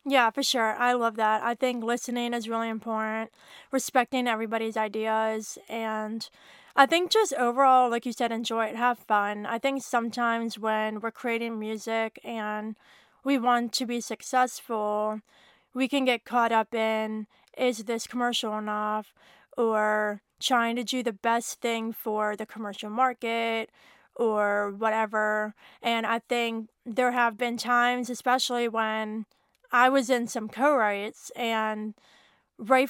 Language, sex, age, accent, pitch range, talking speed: English, female, 20-39, American, 220-245 Hz, 145 wpm